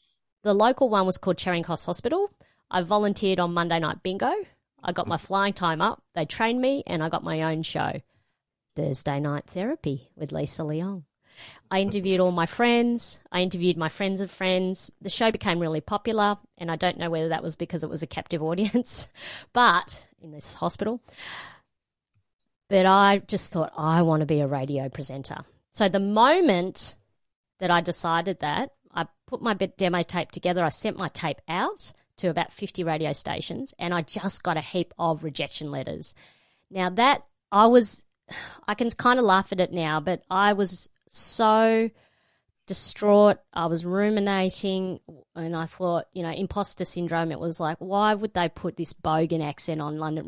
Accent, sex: Australian, female